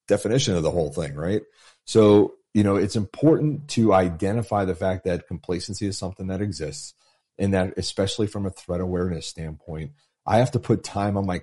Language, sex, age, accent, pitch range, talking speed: English, male, 30-49, American, 80-100 Hz, 190 wpm